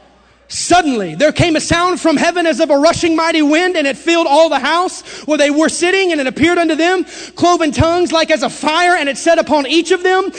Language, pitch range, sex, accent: English, 300-360 Hz, male, American